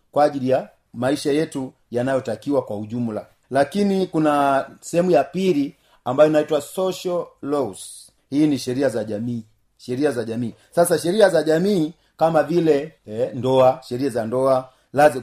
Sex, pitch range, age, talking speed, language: male, 125-165 Hz, 40-59, 145 wpm, Swahili